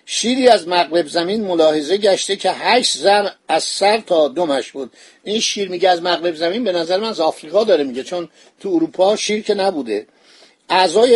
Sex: male